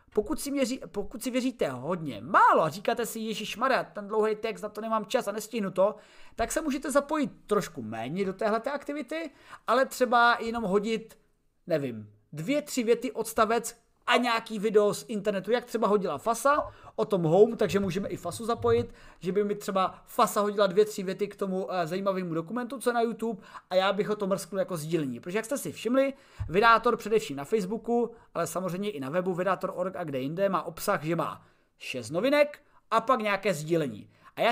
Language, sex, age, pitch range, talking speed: Czech, male, 30-49, 180-245 Hz, 195 wpm